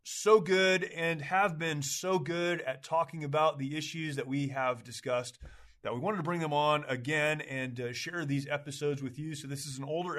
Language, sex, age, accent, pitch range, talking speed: English, male, 30-49, American, 140-165 Hz, 210 wpm